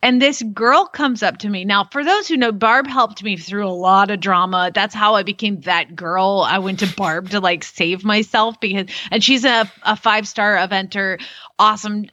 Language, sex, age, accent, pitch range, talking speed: English, female, 30-49, American, 190-245 Hz, 215 wpm